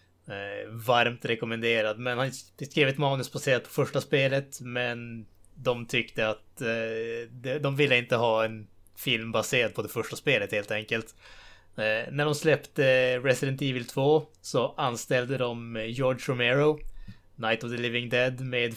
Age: 20-39